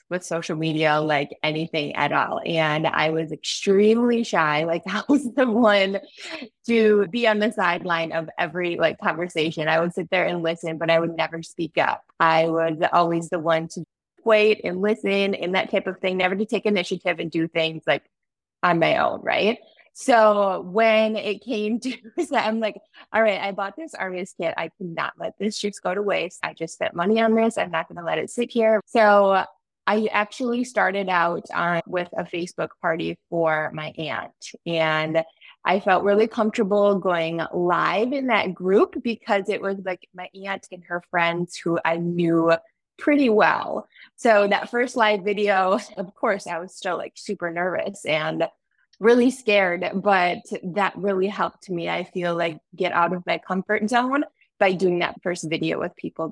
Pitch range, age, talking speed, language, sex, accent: 170-215 Hz, 20-39, 185 wpm, English, female, American